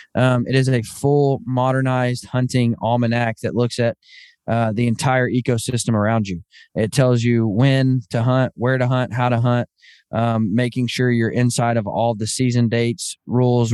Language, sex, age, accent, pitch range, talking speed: English, male, 20-39, American, 115-135 Hz, 175 wpm